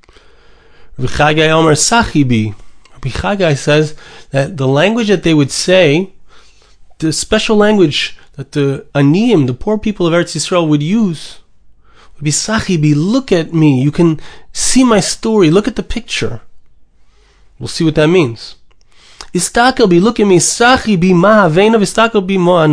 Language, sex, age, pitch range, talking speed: English, male, 30-49, 145-205 Hz, 125 wpm